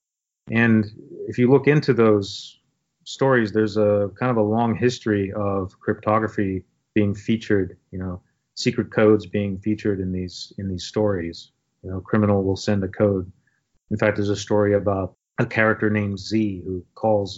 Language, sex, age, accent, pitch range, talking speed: English, male, 30-49, American, 95-110 Hz, 170 wpm